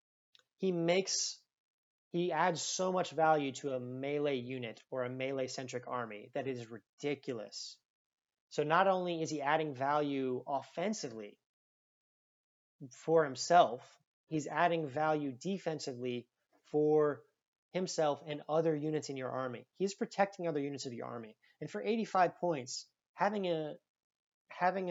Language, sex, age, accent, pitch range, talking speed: English, male, 30-49, American, 130-165 Hz, 135 wpm